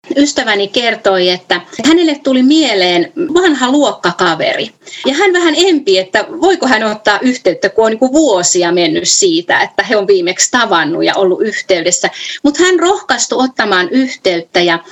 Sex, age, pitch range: female, 30-49, 190-275 Hz